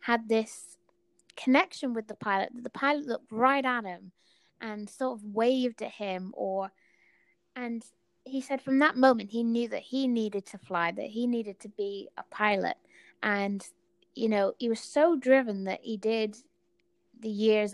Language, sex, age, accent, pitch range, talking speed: English, female, 20-39, British, 205-270 Hz, 175 wpm